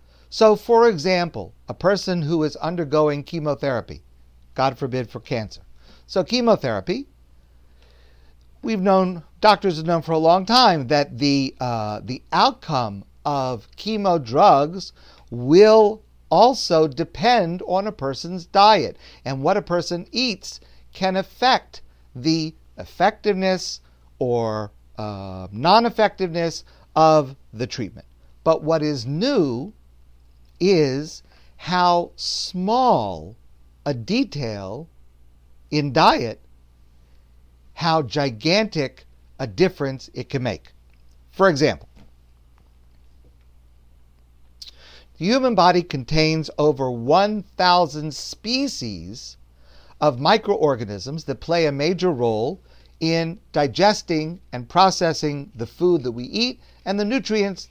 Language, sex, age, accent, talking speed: English, male, 50-69, American, 105 wpm